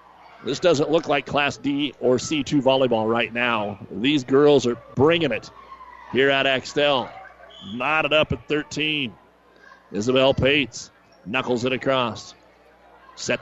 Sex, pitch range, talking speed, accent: male, 130-150 Hz, 130 wpm, American